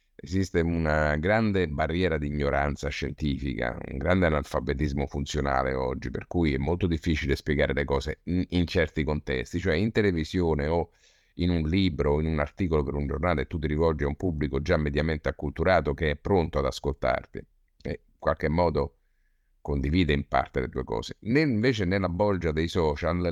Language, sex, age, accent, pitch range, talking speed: Italian, male, 50-69, native, 70-90 Hz, 175 wpm